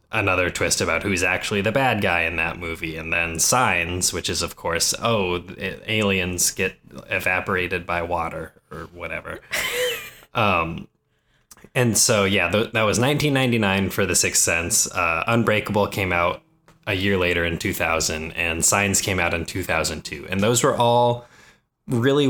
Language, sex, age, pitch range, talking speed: English, male, 20-39, 90-115 Hz, 155 wpm